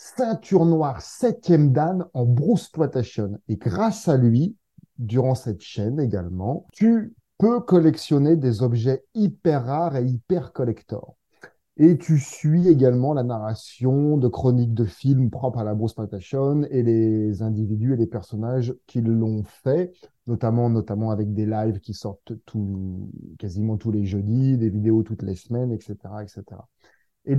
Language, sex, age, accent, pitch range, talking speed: French, male, 30-49, French, 115-155 Hz, 150 wpm